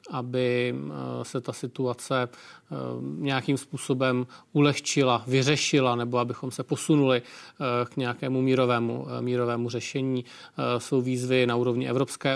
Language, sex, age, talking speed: Czech, male, 40-59, 105 wpm